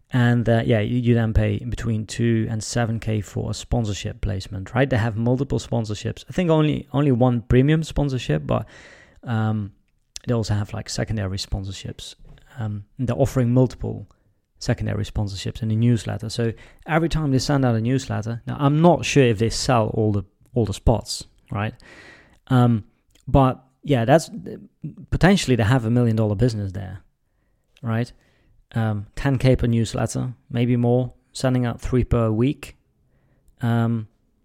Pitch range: 105-130 Hz